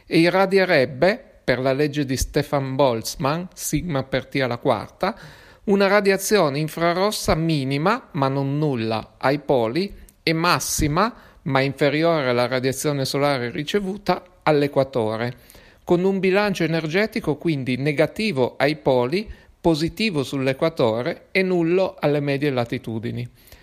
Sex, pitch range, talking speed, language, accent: male, 135-180 Hz, 115 wpm, Italian, native